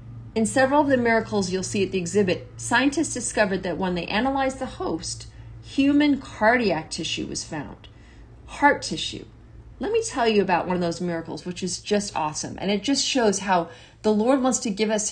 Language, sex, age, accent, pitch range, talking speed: English, female, 40-59, American, 175-220 Hz, 195 wpm